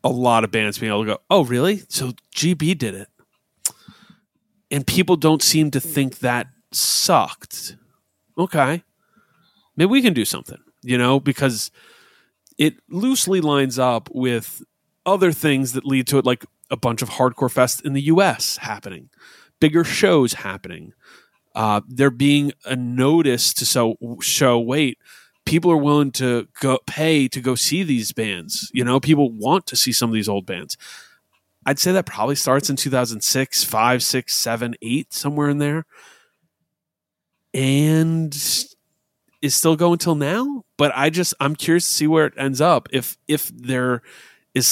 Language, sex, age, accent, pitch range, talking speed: English, male, 30-49, American, 125-160 Hz, 160 wpm